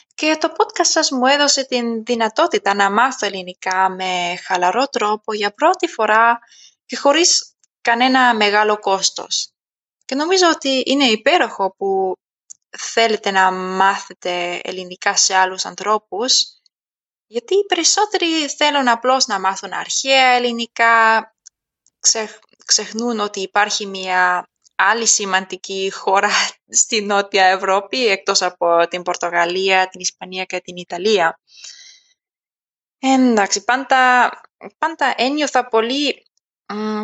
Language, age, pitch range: Greek, 20-39, 195-260 Hz